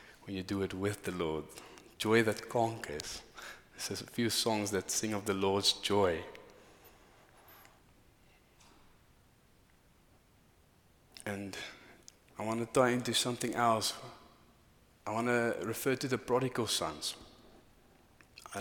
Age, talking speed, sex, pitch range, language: 30-49, 115 wpm, male, 100-120 Hz, English